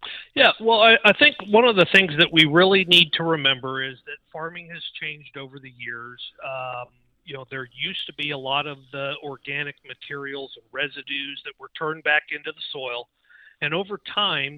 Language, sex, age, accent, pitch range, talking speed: English, male, 50-69, American, 130-170 Hz, 200 wpm